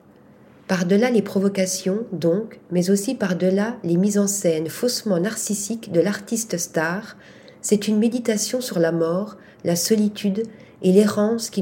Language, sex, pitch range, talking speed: French, female, 175-210 Hz, 140 wpm